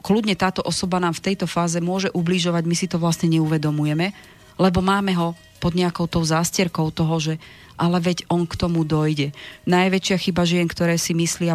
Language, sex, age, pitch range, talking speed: Slovak, female, 40-59, 160-190 Hz, 180 wpm